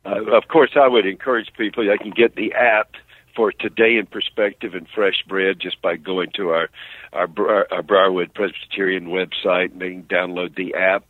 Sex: male